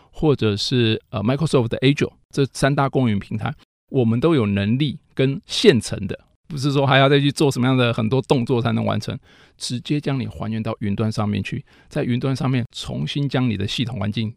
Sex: male